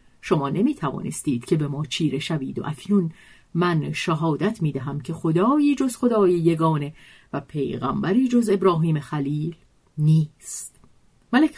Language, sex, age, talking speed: Persian, female, 50-69, 135 wpm